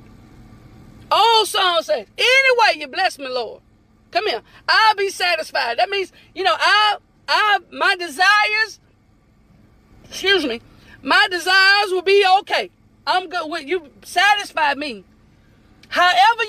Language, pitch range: English, 255-390 Hz